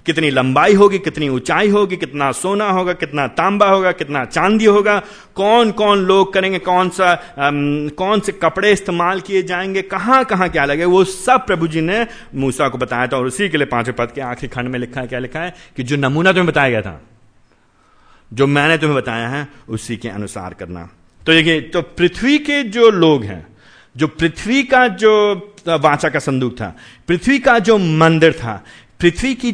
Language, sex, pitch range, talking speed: Hindi, male, 145-205 Hz, 195 wpm